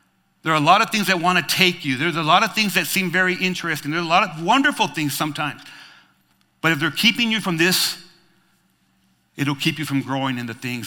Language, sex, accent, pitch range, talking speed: English, male, American, 130-180 Hz, 230 wpm